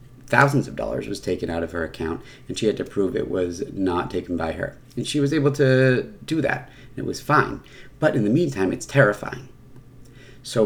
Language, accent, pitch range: English, American, 100-135 Hz